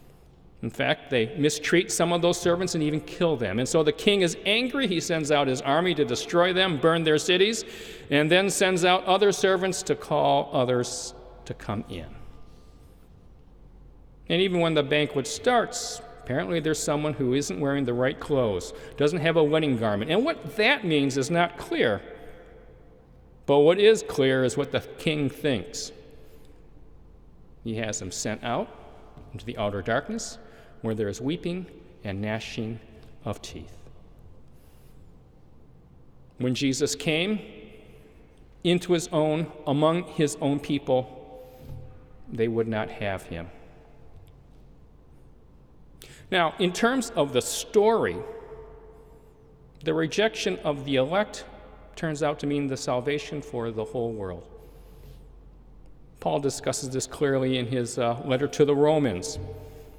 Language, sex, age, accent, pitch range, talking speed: English, male, 50-69, American, 115-175 Hz, 140 wpm